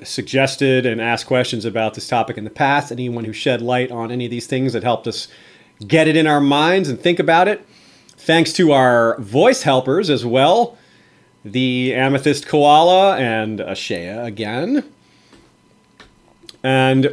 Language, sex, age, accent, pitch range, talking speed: English, male, 30-49, American, 120-150 Hz, 160 wpm